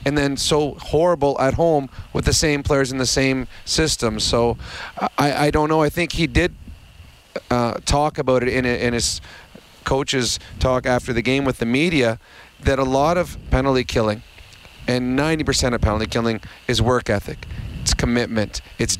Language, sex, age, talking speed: English, male, 30-49, 175 wpm